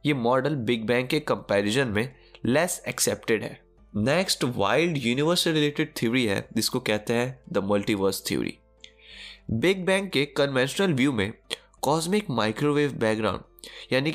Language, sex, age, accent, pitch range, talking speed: Hindi, male, 20-39, native, 115-170 Hz, 135 wpm